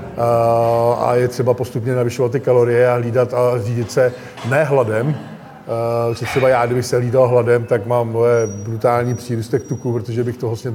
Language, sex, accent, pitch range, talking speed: Czech, male, native, 120-130 Hz, 165 wpm